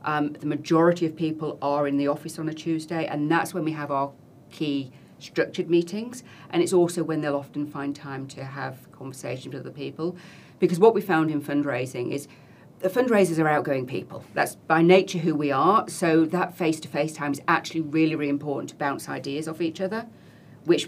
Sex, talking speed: female, 200 wpm